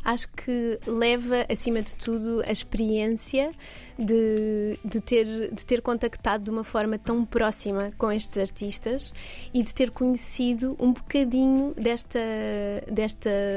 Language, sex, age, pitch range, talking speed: Portuguese, female, 20-39, 215-240 Hz, 135 wpm